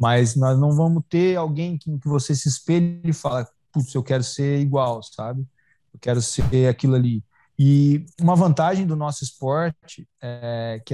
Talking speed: 170 wpm